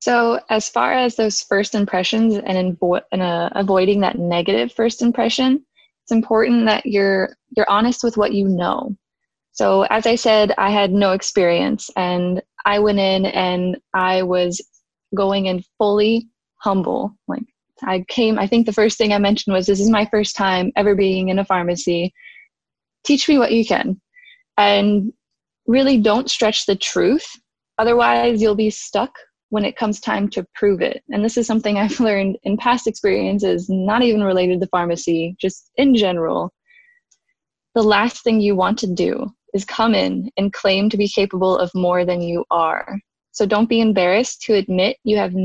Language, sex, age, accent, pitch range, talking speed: English, female, 20-39, American, 190-235 Hz, 175 wpm